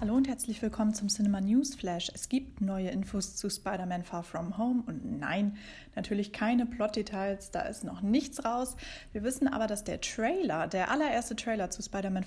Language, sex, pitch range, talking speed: German, female, 195-255 Hz, 185 wpm